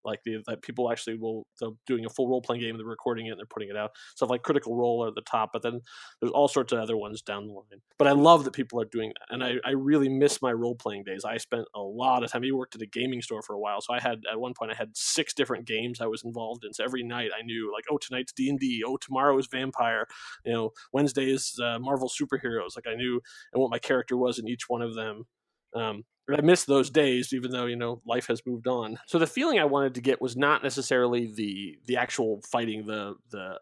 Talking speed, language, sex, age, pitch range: 270 wpm, English, male, 20-39, 115-140 Hz